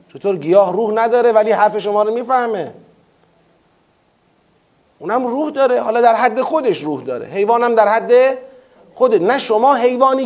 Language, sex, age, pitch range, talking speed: Persian, male, 40-59, 185-245 Hz, 145 wpm